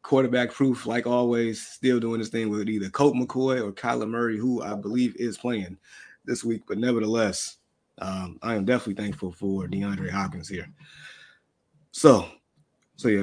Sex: male